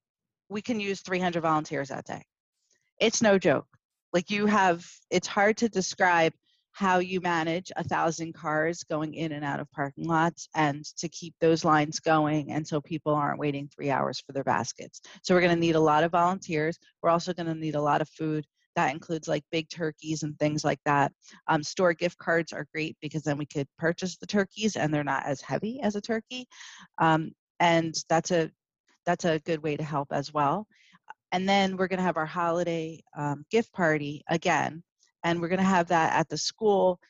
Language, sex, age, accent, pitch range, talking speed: English, female, 40-59, American, 155-180 Hz, 200 wpm